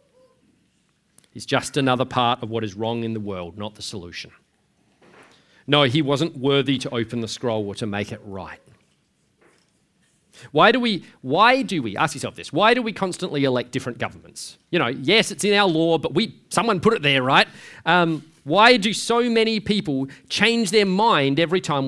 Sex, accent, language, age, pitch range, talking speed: male, Australian, English, 40-59, 135-210 Hz, 185 wpm